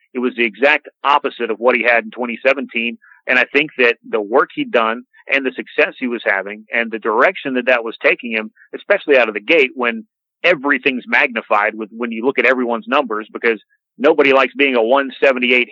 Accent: American